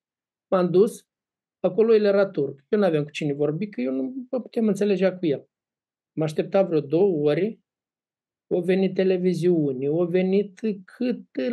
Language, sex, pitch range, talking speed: Romanian, male, 155-225 Hz, 150 wpm